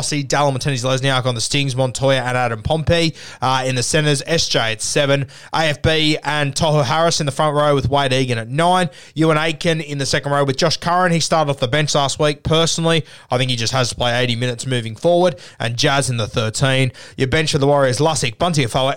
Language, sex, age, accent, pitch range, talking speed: English, male, 20-39, Australian, 130-155 Hz, 230 wpm